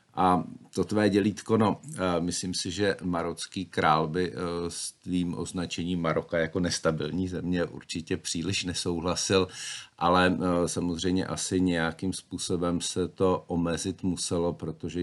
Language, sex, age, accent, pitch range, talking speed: Czech, male, 50-69, native, 80-95 Hz, 125 wpm